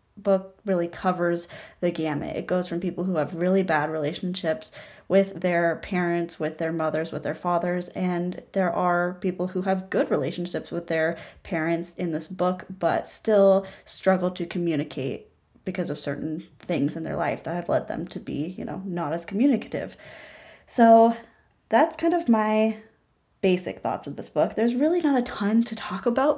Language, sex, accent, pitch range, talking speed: English, female, American, 170-210 Hz, 175 wpm